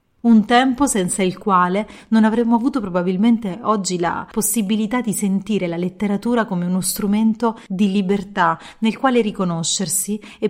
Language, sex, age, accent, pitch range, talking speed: Italian, female, 30-49, native, 185-235 Hz, 145 wpm